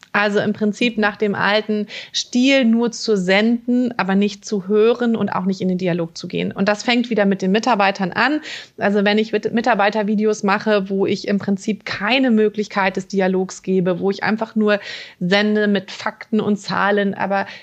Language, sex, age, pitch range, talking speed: German, female, 30-49, 190-220 Hz, 185 wpm